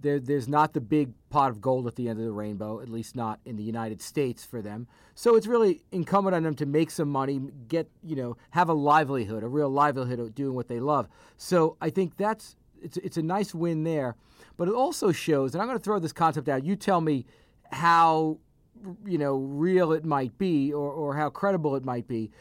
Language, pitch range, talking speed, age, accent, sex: English, 130-170 Hz, 230 wpm, 40-59, American, male